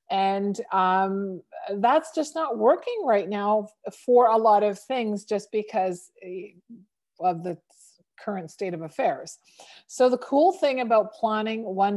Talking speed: 140 wpm